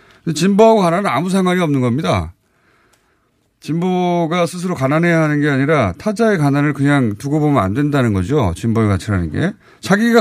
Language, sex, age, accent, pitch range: Korean, male, 30-49, native, 115-175 Hz